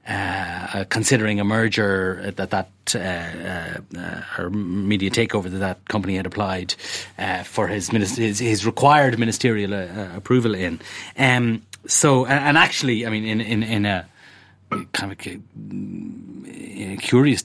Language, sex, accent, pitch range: English, male, Irish, 100-125 Hz